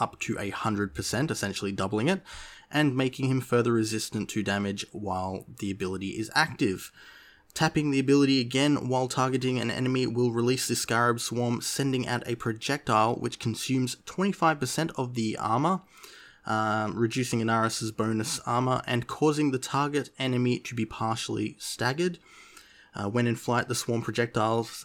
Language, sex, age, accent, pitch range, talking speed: English, male, 20-39, Australian, 110-130 Hz, 145 wpm